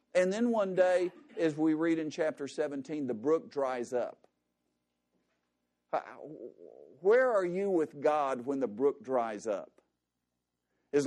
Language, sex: English, male